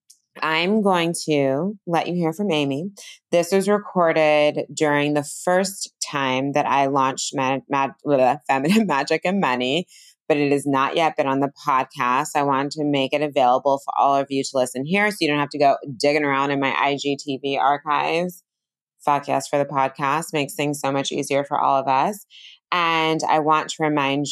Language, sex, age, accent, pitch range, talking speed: English, female, 20-39, American, 140-165 Hz, 190 wpm